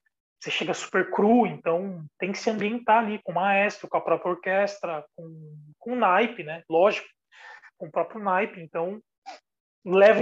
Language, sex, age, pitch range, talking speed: Portuguese, male, 20-39, 175-225 Hz, 165 wpm